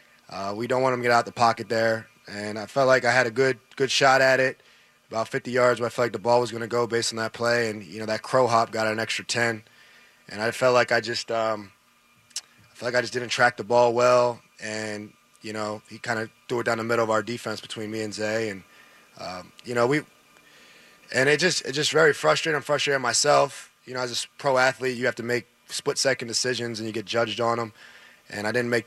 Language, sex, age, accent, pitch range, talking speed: English, male, 20-39, American, 110-125 Hz, 250 wpm